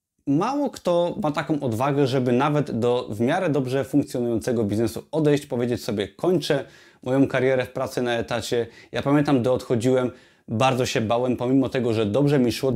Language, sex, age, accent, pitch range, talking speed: Polish, male, 30-49, native, 125-155 Hz, 170 wpm